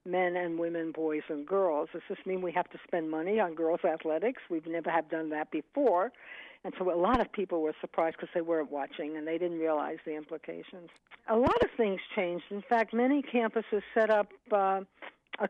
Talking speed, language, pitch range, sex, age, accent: 210 wpm, English, 170-210 Hz, female, 60-79, American